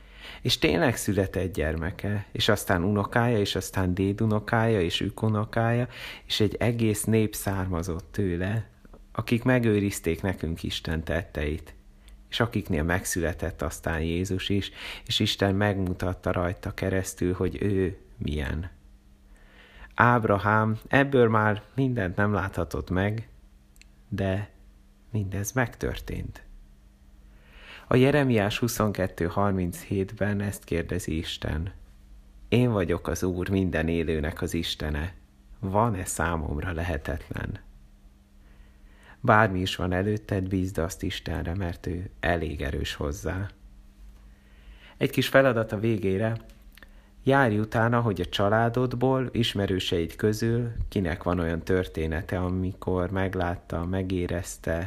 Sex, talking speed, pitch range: male, 105 wpm, 80-105 Hz